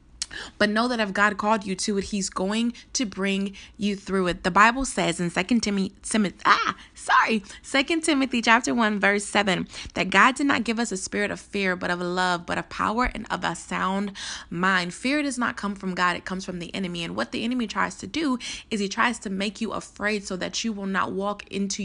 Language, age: English, 20-39